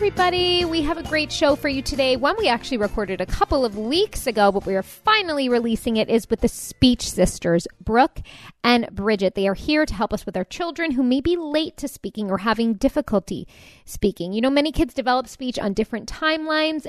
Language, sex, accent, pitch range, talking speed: English, female, American, 205-295 Hz, 215 wpm